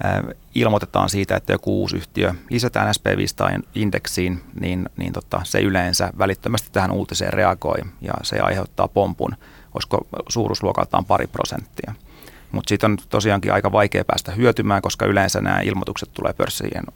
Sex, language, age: male, Finnish, 30-49